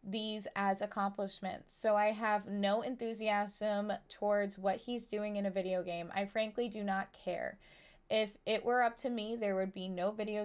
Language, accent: English, American